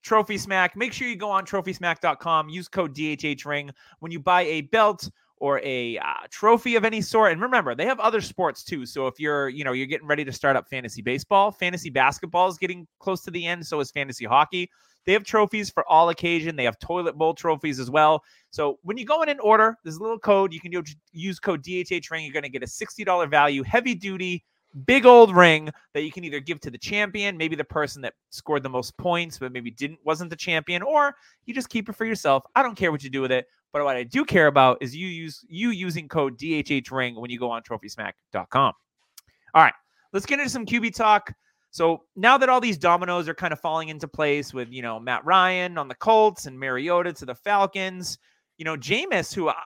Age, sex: 30-49, male